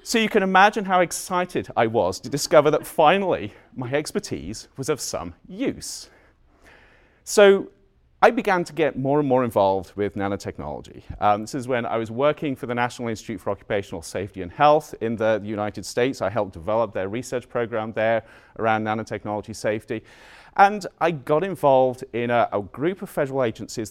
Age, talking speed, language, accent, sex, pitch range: 40-59, 175 wpm, English, British, male, 105-155 Hz